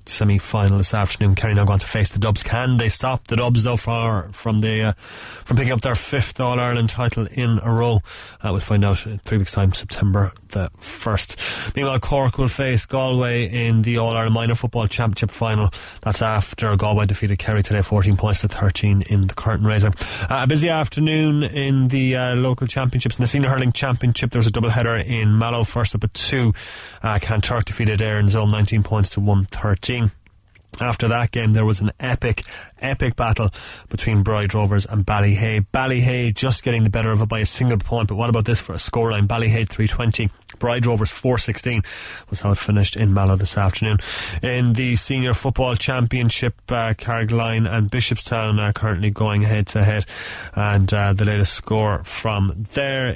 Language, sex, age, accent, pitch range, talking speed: English, male, 20-39, Irish, 105-120 Hz, 195 wpm